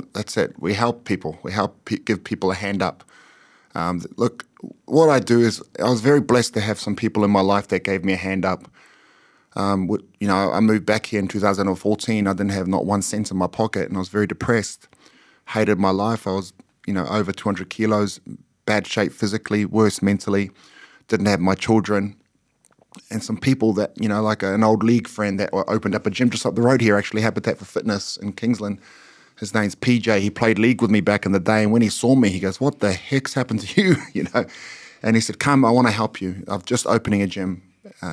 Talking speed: 230 wpm